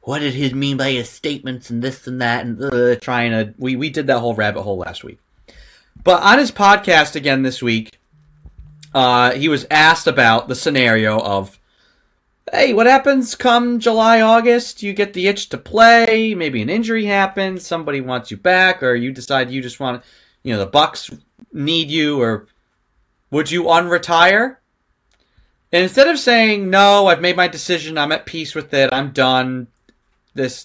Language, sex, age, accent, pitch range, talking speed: English, male, 30-49, American, 125-190 Hz, 180 wpm